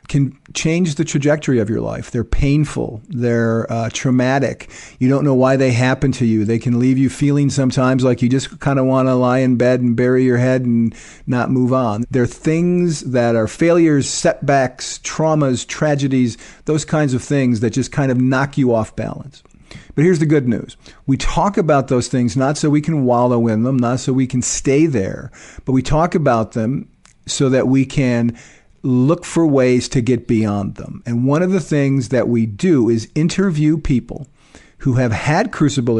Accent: American